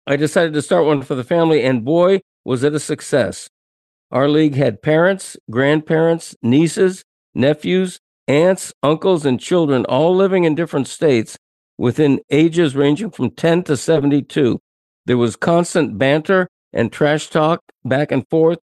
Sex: male